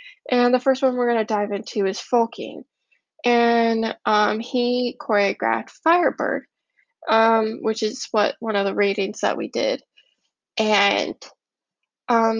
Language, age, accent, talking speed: English, 10-29, American, 135 wpm